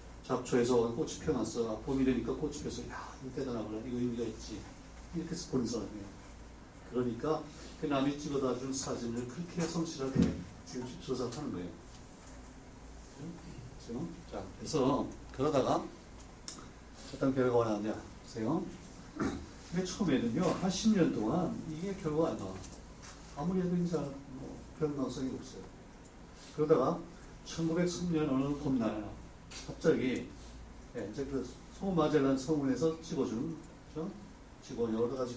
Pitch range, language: 120-160 Hz, Korean